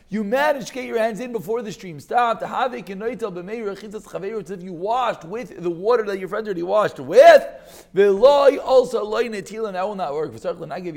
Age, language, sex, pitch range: 30-49, English, male, 130-195 Hz